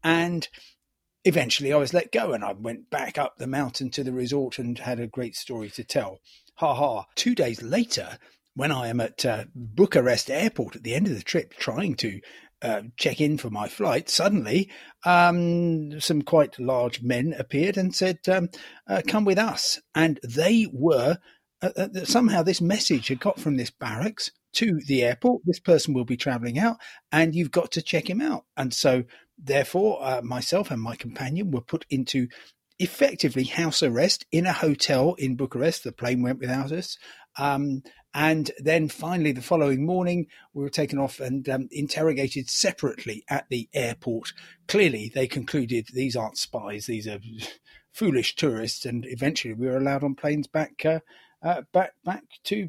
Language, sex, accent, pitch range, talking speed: English, male, British, 125-170 Hz, 180 wpm